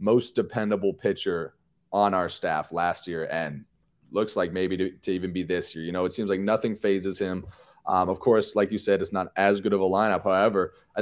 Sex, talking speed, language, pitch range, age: male, 225 wpm, English, 95-105 Hz, 20-39